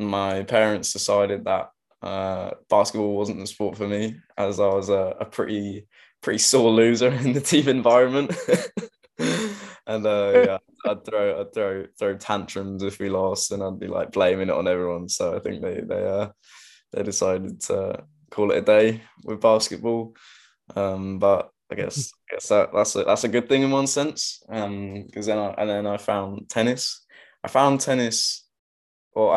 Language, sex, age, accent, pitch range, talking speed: English, male, 10-29, British, 100-115 Hz, 180 wpm